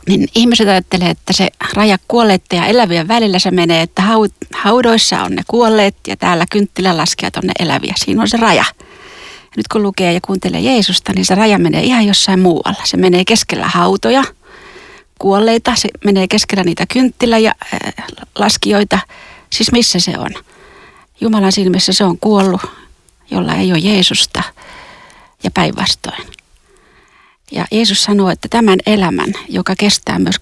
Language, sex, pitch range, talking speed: Finnish, female, 185-230 Hz, 160 wpm